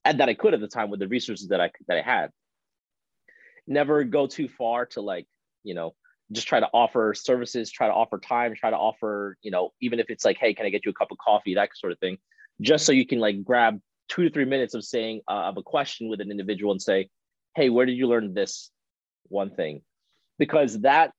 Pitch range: 100-125 Hz